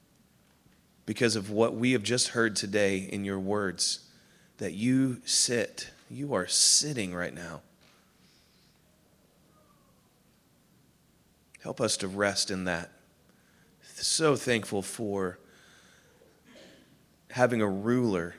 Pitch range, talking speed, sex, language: 95-115 Hz, 100 wpm, male, English